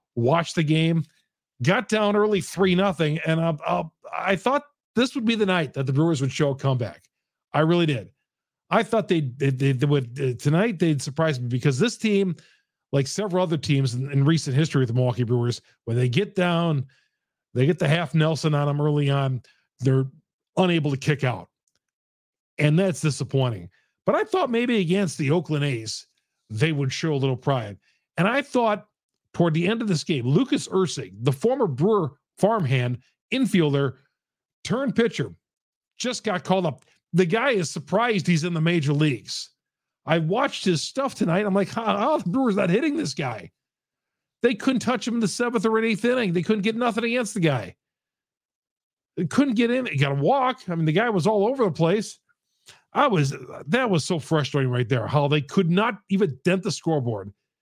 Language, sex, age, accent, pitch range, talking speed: English, male, 40-59, American, 140-210 Hz, 195 wpm